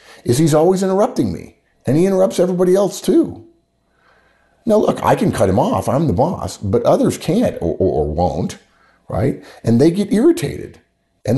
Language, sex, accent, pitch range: English, male, American, 85-120 Hz